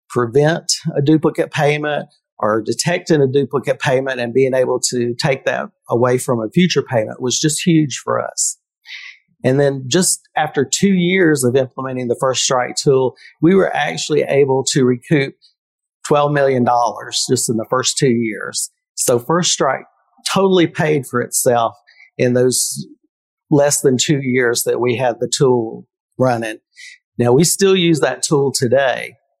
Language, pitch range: English, 120-150 Hz